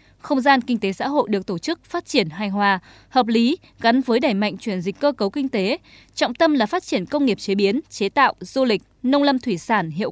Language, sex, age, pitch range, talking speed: Vietnamese, female, 20-39, 210-275 Hz, 255 wpm